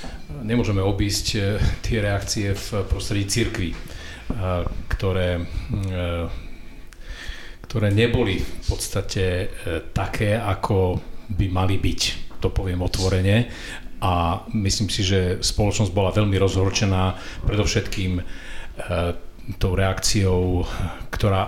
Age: 40-59